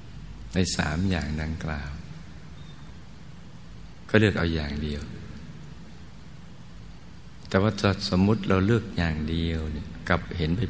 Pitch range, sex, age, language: 80-90 Hz, male, 60-79, Thai